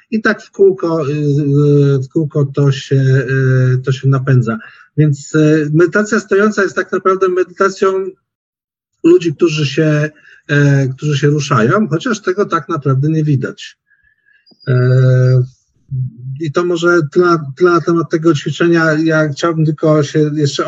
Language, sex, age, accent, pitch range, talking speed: Polish, male, 50-69, native, 130-155 Hz, 125 wpm